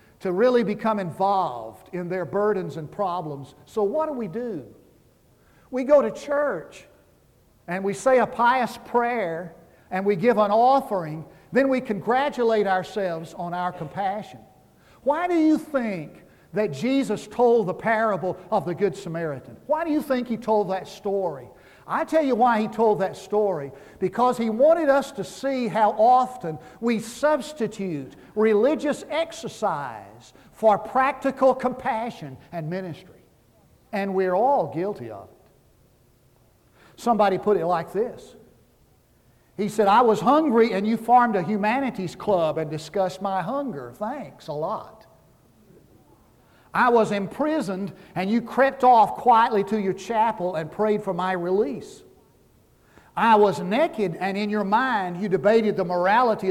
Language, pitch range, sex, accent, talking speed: English, 185-240 Hz, male, American, 145 wpm